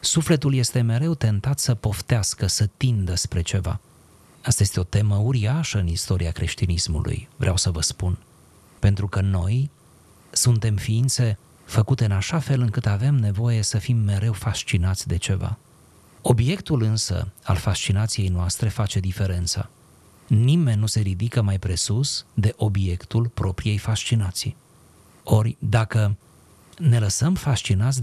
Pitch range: 100-125 Hz